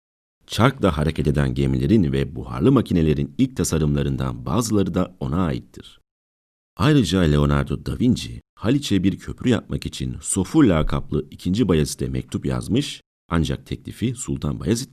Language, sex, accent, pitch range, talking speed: Turkish, male, native, 70-100 Hz, 135 wpm